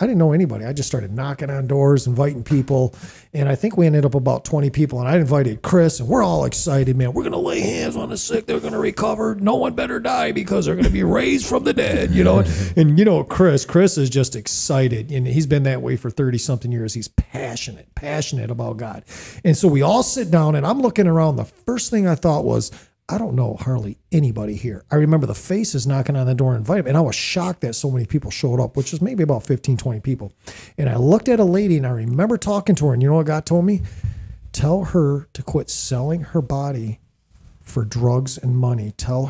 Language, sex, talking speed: English, male, 245 wpm